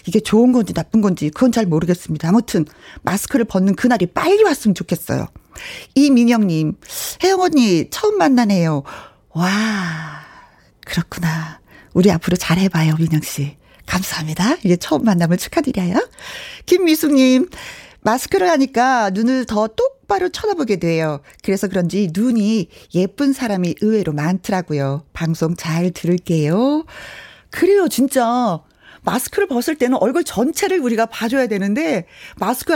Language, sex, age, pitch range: Korean, female, 40-59, 180-270 Hz